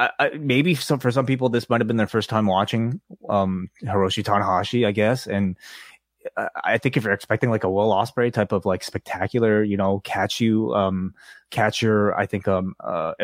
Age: 20-39